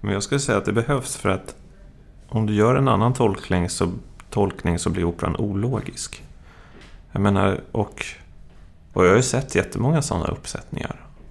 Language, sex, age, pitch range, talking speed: Swedish, male, 30-49, 85-115 Hz, 170 wpm